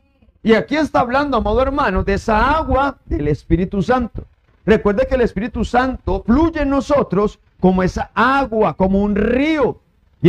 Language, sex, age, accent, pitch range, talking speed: Spanish, male, 50-69, Mexican, 200-280 Hz, 155 wpm